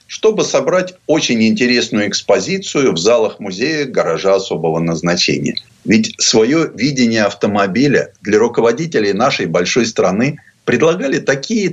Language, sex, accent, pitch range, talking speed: Russian, male, native, 110-170 Hz, 115 wpm